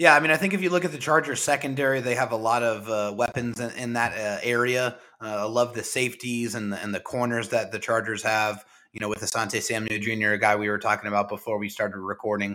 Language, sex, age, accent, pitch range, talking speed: English, male, 30-49, American, 115-145 Hz, 250 wpm